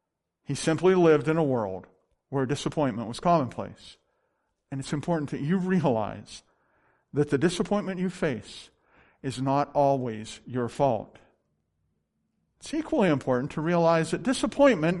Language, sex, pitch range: English, male, 135-195 Hz